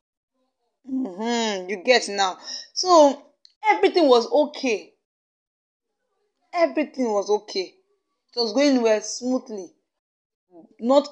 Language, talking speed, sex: English, 90 wpm, female